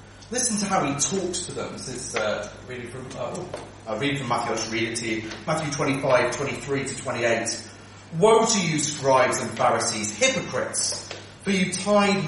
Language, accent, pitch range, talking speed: English, British, 110-170 Hz, 185 wpm